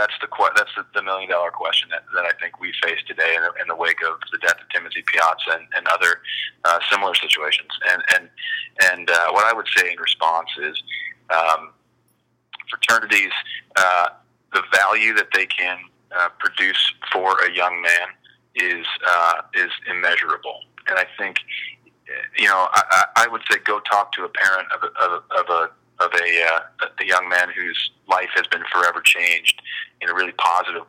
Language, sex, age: English, male, 30-49